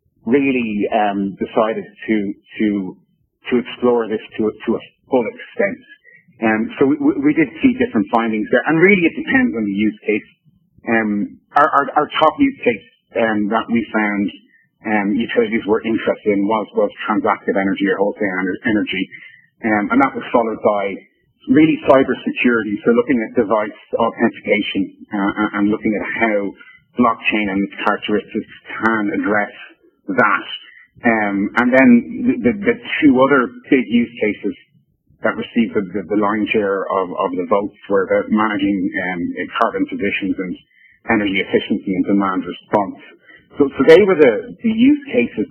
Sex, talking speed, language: male, 160 wpm, English